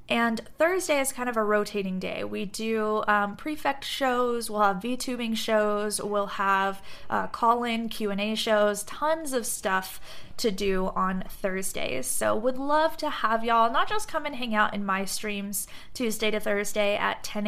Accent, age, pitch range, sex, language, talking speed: American, 10-29, 205-245 Hz, female, English, 170 wpm